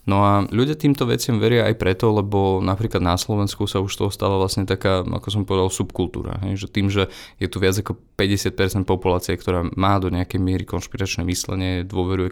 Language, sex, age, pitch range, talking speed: Slovak, male, 20-39, 90-105 Hz, 195 wpm